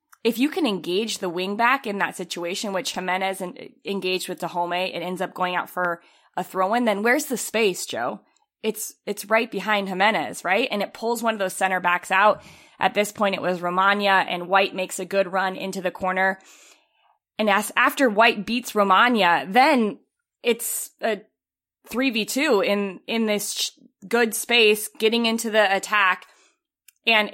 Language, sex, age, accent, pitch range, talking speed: English, female, 20-39, American, 185-225 Hz, 175 wpm